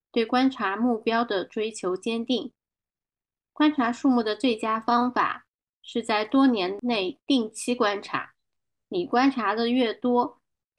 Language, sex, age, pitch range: Chinese, female, 10-29, 205-255 Hz